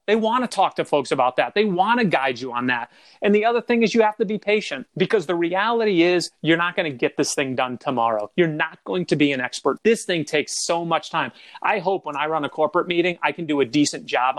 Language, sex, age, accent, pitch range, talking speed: English, male, 30-49, American, 145-190 Hz, 270 wpm